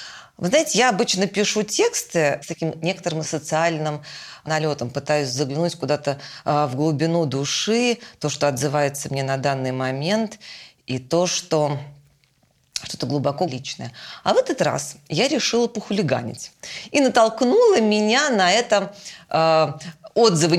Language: Russian